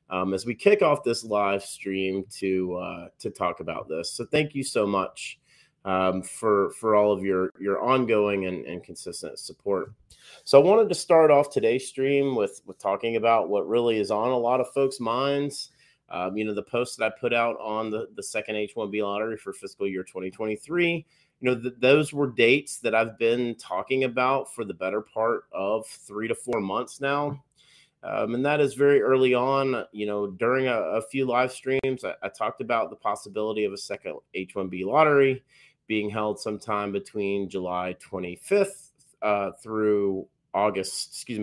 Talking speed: 185 wpm